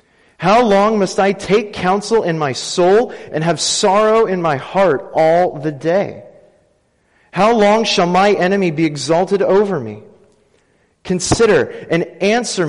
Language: English